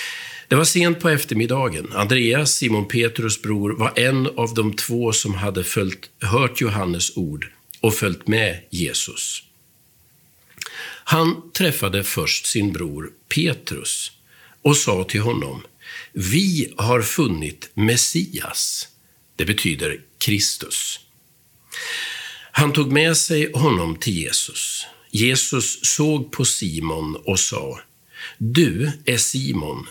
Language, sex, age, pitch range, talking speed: Swedish, male, 50-69, 105-150 Hz, 110 wpm